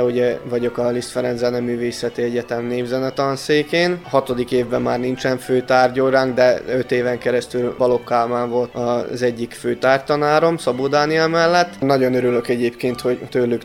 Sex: male